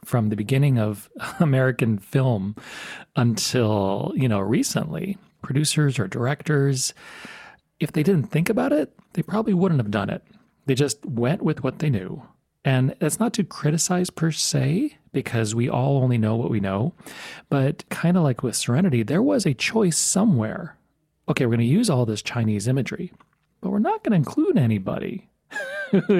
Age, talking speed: 40-59, 170 wpm